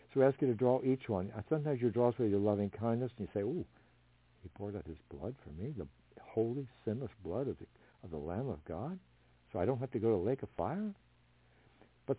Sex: male